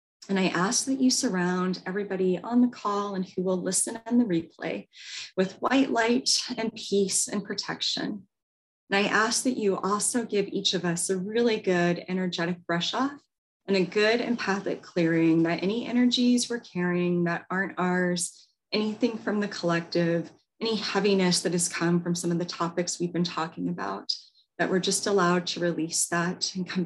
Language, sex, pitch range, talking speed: English, female, 175-215 Hz, 180 wpm